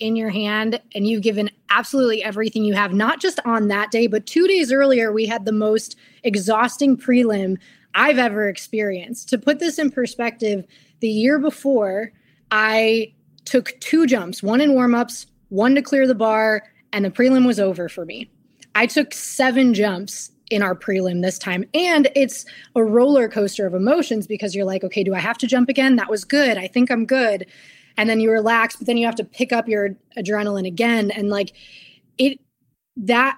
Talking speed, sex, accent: 190 wpm, female, American